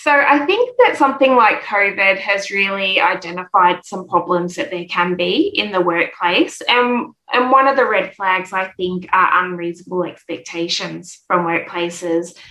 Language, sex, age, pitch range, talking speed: English, female, 20-39, 180-210 Hz, 160 wpm